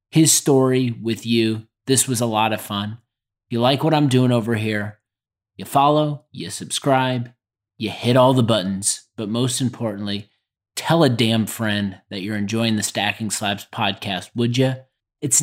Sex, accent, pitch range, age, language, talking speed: male, American, 105-120 Hz, 30-49, English, 170 wpm